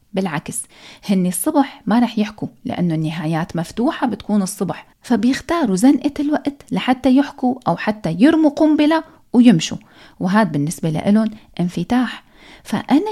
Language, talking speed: Arabic, 120 wpm